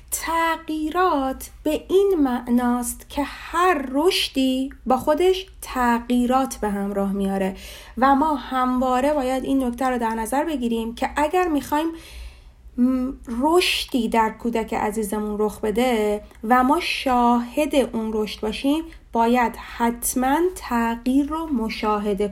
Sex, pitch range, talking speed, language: female, 230-300 Hz, 115 wpm, Persian